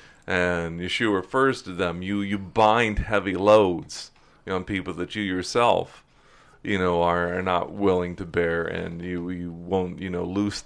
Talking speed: 165 wpm